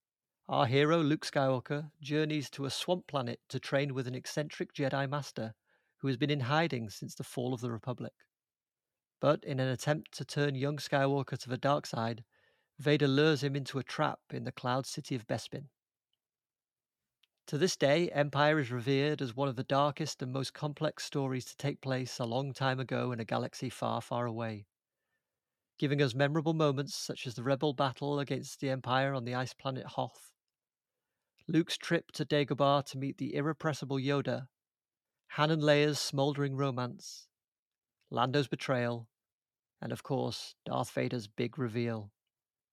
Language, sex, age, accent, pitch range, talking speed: English, male, 40-59, British, 125-150 Hz, 165 wpm